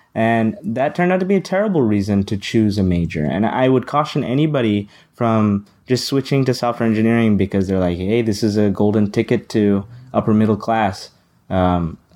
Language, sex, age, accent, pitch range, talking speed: English, male, 20-39, American, 95-115 Hz, 190 wpm